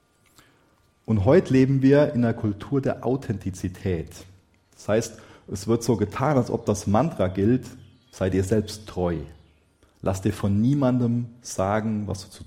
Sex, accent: male, German